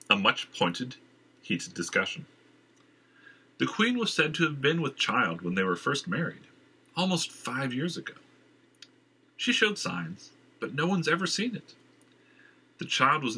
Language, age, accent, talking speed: English, 40-59, American, 155 wpm